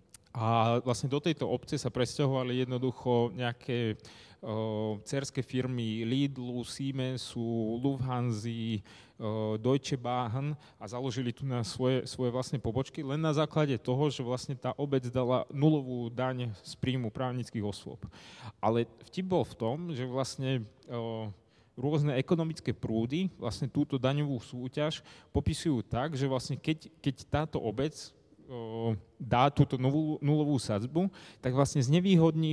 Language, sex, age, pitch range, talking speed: Slovak, male, 30-49, 115-145 Hz, 125 wpm